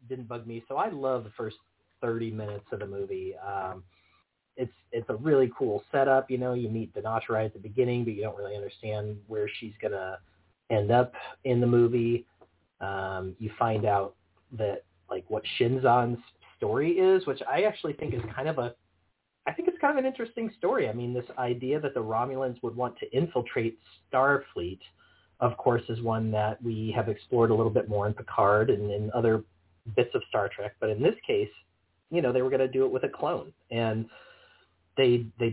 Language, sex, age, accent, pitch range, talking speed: English, male, 30-49, American, 105-135 Hz, 200 wpm